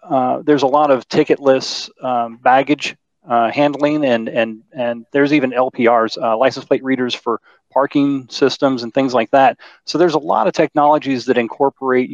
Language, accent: English, American